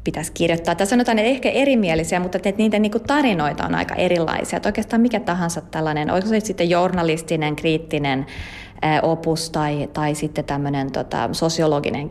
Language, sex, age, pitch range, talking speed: Finnish, female, 30-49, 150-200 Hz, 150 wpm